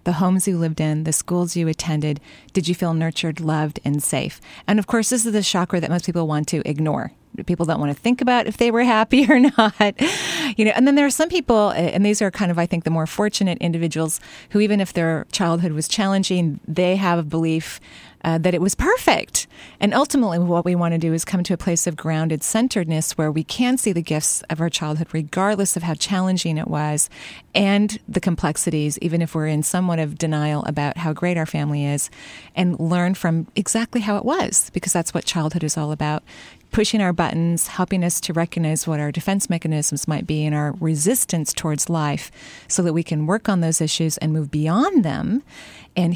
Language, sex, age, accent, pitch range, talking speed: English, female, 30-49, American, 155-195 Hz, 215 wpm